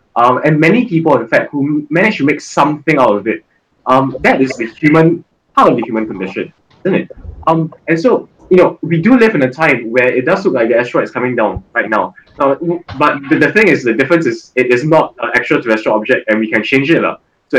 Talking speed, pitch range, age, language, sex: 240 wpm, 125-170 Hz, 10-29, English, male